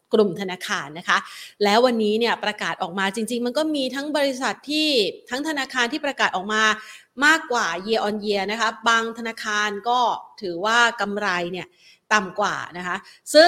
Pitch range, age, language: 205-265 Hz, 30-49, Thai